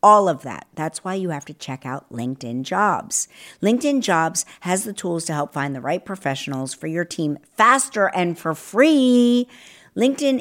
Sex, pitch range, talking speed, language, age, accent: female, 130-195 Hz, 180 wpm, English, 50-69, American